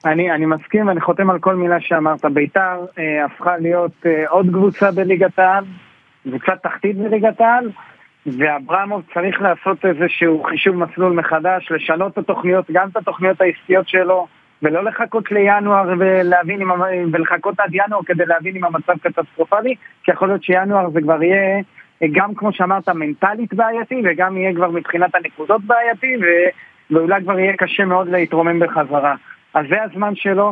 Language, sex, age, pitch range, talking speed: Hebrew, male, 30-49, 165-200 Hz, 155 wpm